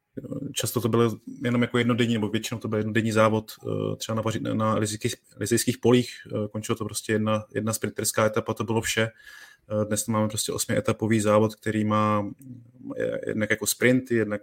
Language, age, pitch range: Czech, 20-39, 105-110 Hz